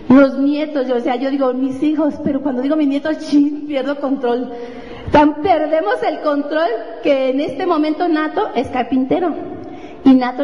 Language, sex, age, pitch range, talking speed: Spanish, female, 40-59, 240-305 Hz, 170 wpm